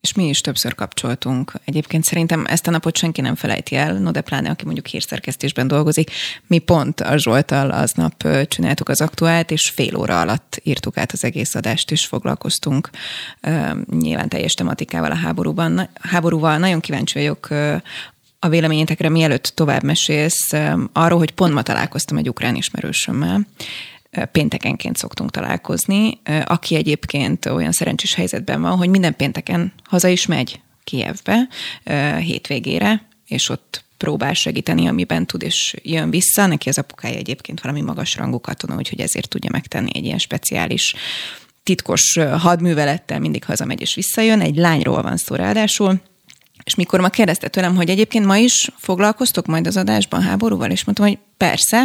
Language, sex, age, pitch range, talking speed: Hungarian, female, 20-39, 145-195 Hz, 155 wpm